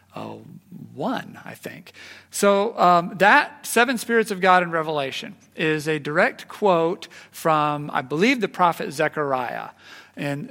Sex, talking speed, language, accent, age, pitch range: male, 135 wpm, English, American, 40-59, 135-180 Hz